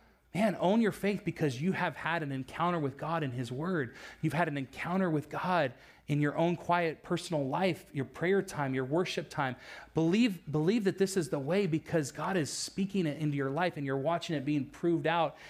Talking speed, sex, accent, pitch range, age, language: 215 wpm, male, American, 145-185 Hz, 30-49, English